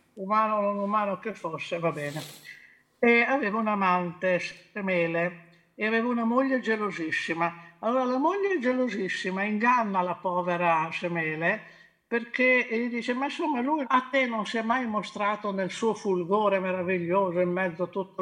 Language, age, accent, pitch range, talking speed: Italian, 50-69, native, 180-235 Hz, 155 wpm